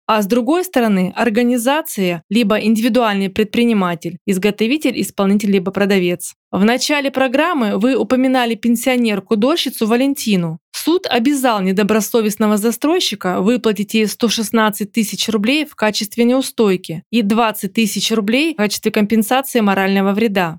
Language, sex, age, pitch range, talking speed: Russian, female, 20-39, 200-250 Hz, 120 wpm